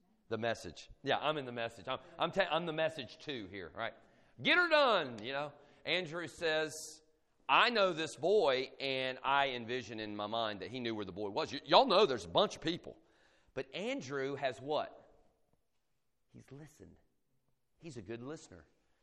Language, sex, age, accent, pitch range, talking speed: English, male, 40-59, American, 120-195 Hz, 185 wpm